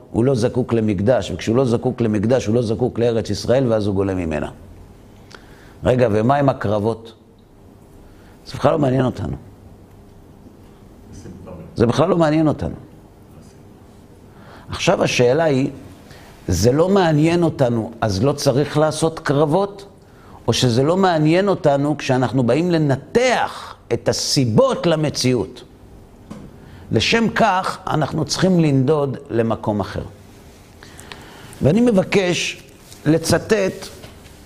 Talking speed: 110 wpm